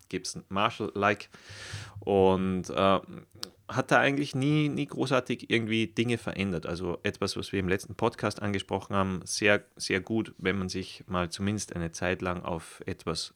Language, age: German, 30-49